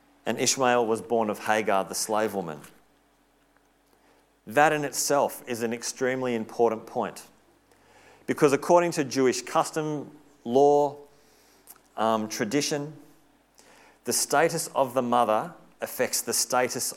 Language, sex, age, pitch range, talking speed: English, male, 40-59, 115-145 Hz, 115 wpm